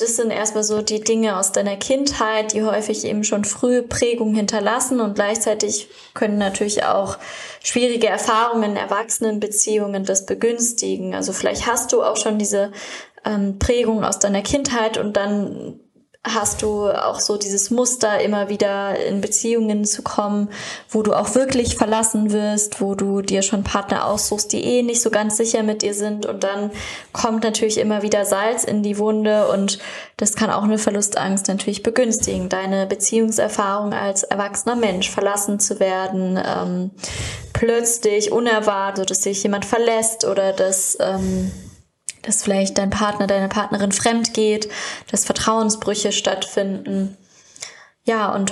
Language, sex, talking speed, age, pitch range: German, female, 150 wpm, 10-29, 200-225 Hz